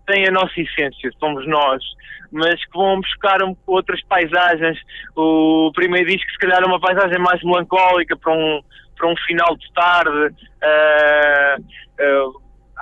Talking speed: 145 wpm